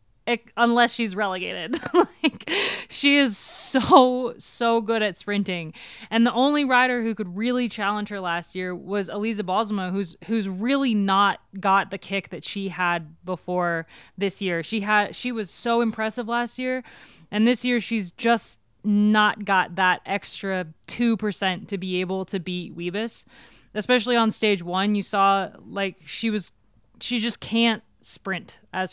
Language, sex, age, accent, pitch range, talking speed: English, female, 20-39, American, 185-230 Hz, 160 wpm